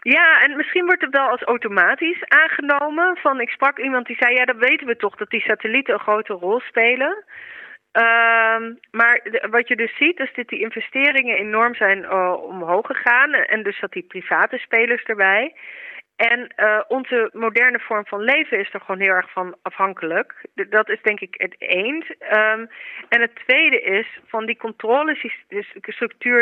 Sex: female